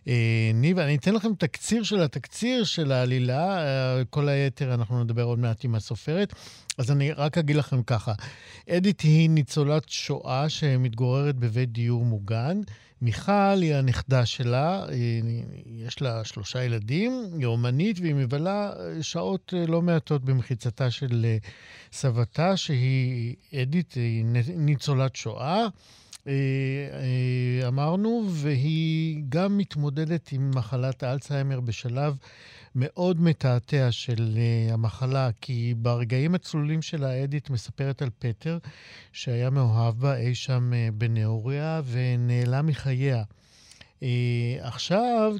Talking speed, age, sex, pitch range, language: 110 wpm, 50-69, male, 120-155 Hz, Hebrew